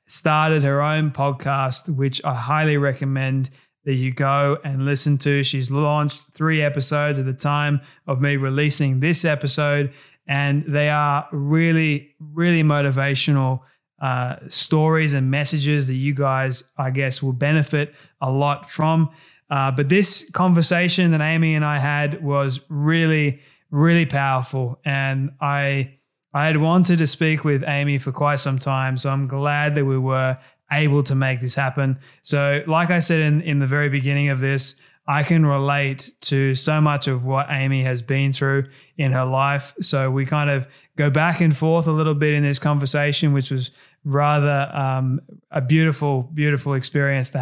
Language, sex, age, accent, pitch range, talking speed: English, male, 20-39, Australian, 135-150 Hz, 165 wpm